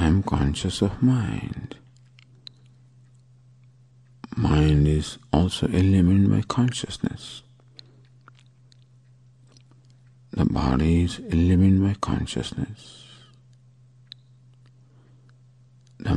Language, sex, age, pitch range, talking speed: English, male, 50-69, 105-125 Hz, 65 wpm